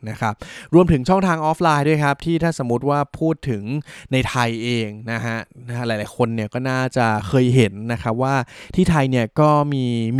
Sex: male